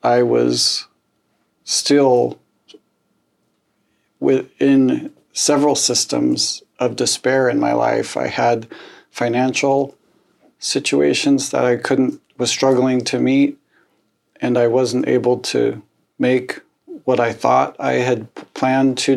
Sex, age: male, 50-69